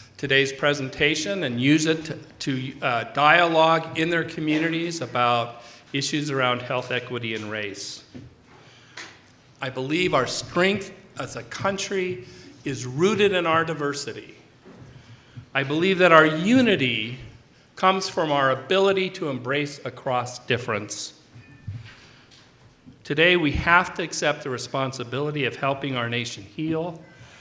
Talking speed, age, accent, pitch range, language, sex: 125 wpm, 40-59, American, 120-150 Hz, English, male